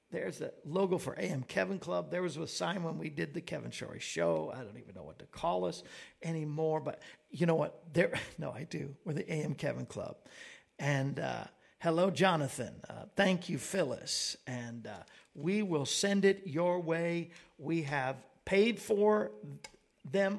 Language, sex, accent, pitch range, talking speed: English, male, American, 145-175 Hz, 180 wpm